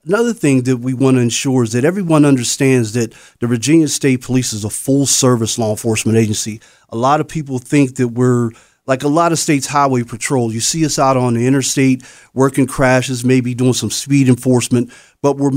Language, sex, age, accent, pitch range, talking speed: English, male, 40-59, American, 120-140 Hz, 200 wpm